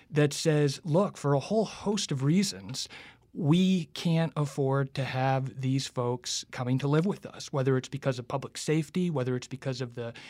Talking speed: 185 wpm